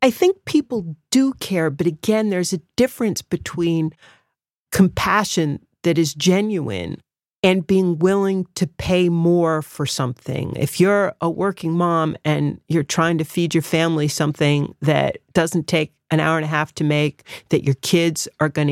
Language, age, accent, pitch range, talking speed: English, 40-59, American, 155-210 Hz, 165 wpm